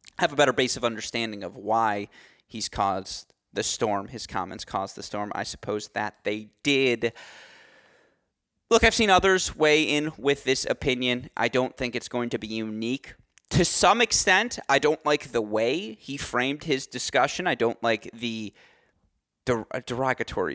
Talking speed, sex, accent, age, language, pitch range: 165 wpm, male, American, 20-39, English, 110-135 Hz